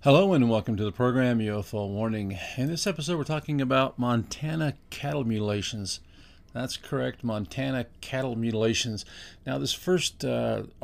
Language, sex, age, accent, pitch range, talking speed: English, male, 50-69, American, 105-135 Hz, 145 wpm